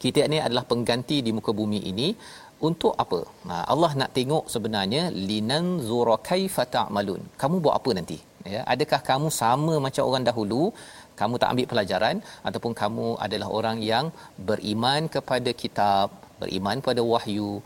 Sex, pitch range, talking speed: male, 110-140 Hz, 145 wpm